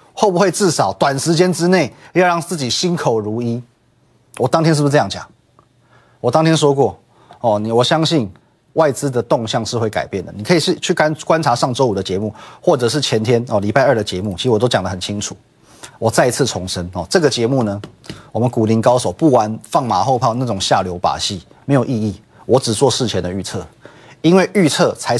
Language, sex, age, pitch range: Chinese, male, 30-49, 110-155 Hz